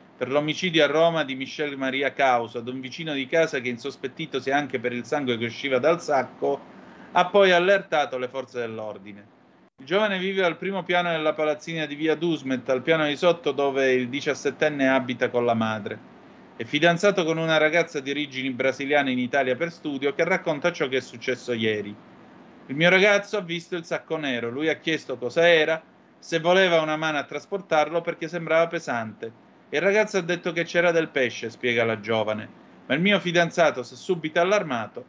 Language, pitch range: Italian, 120-165 Hz